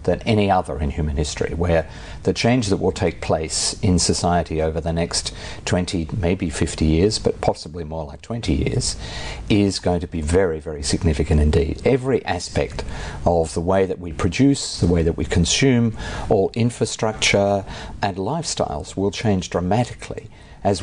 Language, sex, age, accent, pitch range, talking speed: English, male, 50-69, Australian, 80-100 Hz, 165 wpm